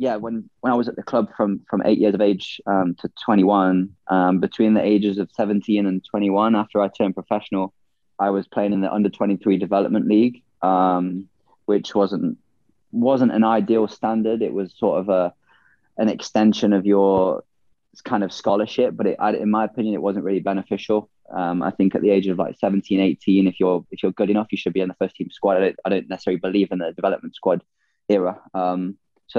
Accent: British